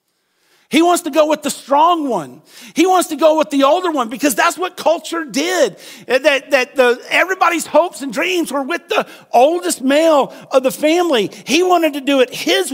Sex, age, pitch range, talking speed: male, 50-69, 255-325 Hz, 195 wpm